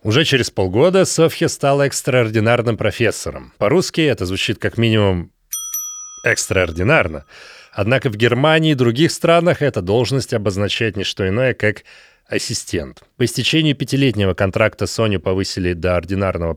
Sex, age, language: male, 30-49, Russian